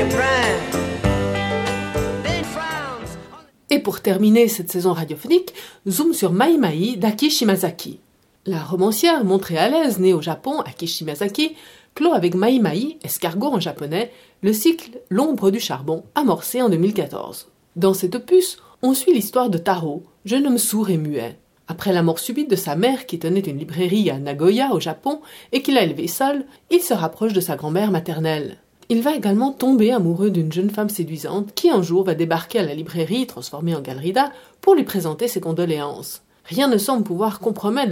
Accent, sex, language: French, female, French